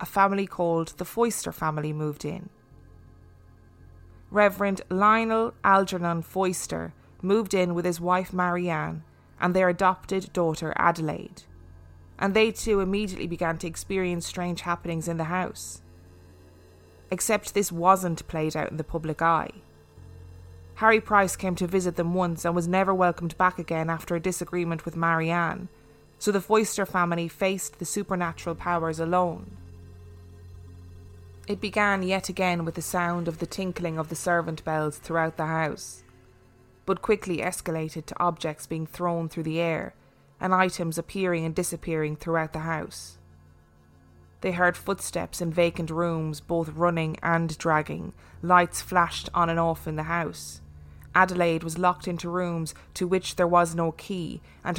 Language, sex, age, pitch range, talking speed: English, female, 20-39, 155-180 Hz, 150 wpm